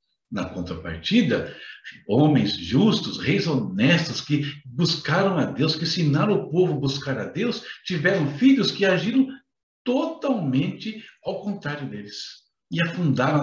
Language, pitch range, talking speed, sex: Portuguese, 135-215 Hz, 125 wpm, male